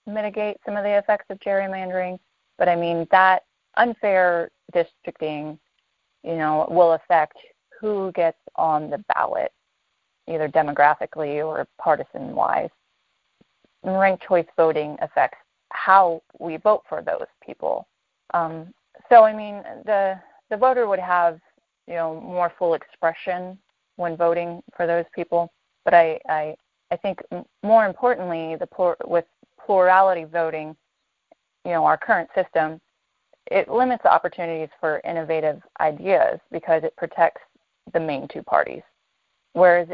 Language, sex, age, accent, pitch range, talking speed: English, female, 30-49, American, 160-195 Hz, 130 wpm